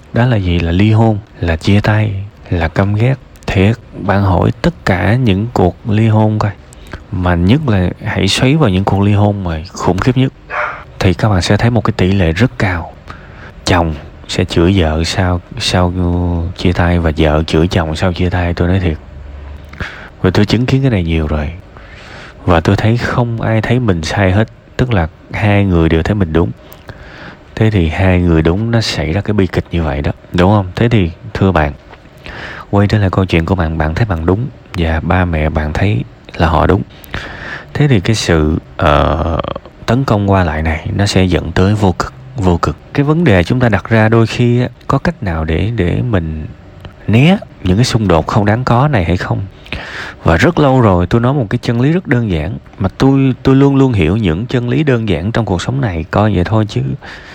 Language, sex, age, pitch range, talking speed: Vietnamese, male, 20-39, 85-115 Hz, 215 wpm